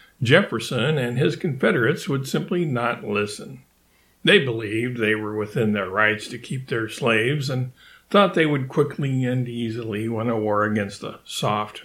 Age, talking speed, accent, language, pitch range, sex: 60-79, 160 wpm, American, English, 105-140 Hz, male